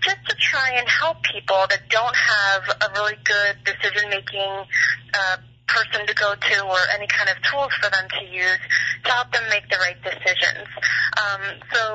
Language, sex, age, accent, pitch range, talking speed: English, female, 30-49, American, 195-230 Hz, 175 wpm